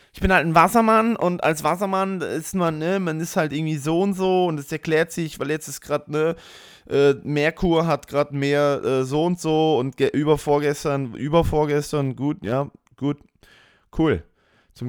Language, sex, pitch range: English, male, 105-150 Hz